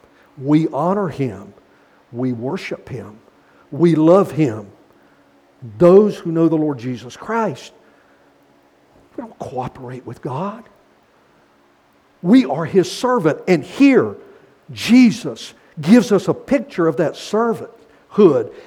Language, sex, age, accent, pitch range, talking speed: English, male, 60-79, American, 140-220 Hz, 115 wpm